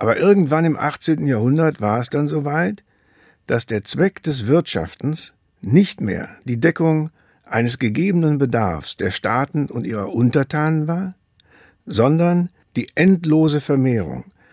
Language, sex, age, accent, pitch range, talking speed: German, male, 60-79, German, 115-160 Hz, 130 wpm